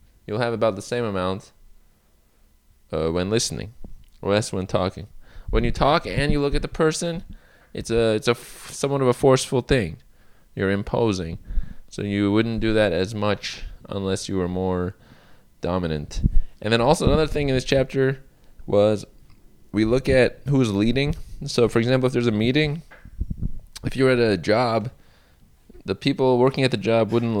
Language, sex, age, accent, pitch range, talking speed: English, male, 20-39, American, 95-125 Hz, 175 wpm